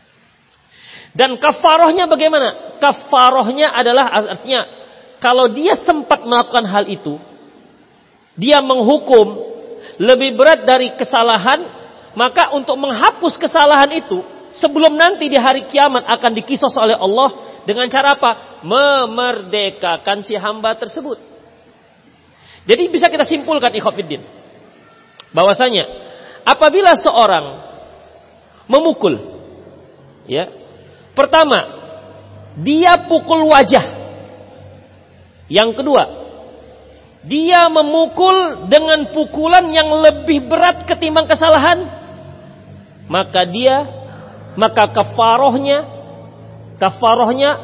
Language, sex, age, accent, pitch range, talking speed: Indonesian, male, 40-59, native, 225-320 Hz, 85 wpm